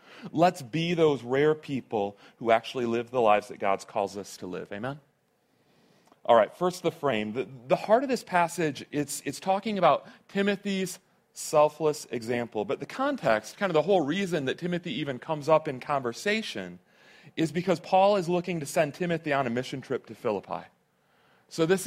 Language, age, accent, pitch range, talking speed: English, 40-59, American, 140-180 Hz, 180 wpm